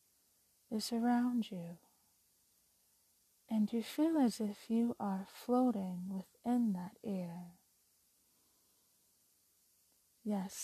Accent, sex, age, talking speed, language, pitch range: American, female, 30-49, 85 wpm, English, 175-240 Hz